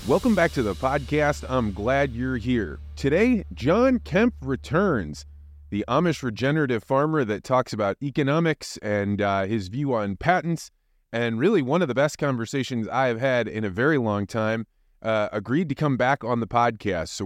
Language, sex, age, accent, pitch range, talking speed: English, male, 30-49, American, 105-140 Hz, 175 wpm